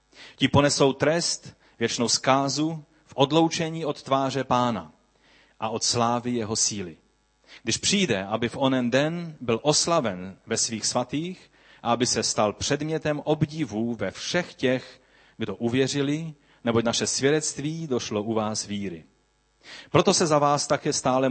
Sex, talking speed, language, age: male, 140 wpm, Czech, 30-49